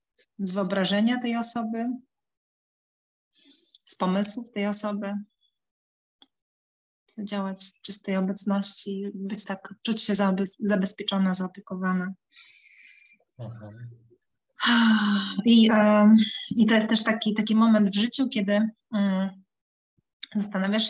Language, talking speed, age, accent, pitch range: Polish, 95 wpm, 30-49, native, 195-225 Hz